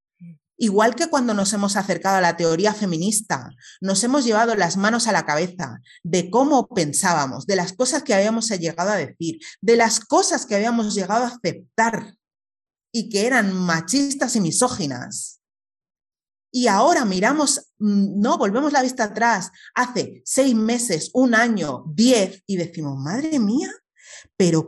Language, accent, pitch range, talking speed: Spanish, Spanish, 185-255 Hz, 150 wpm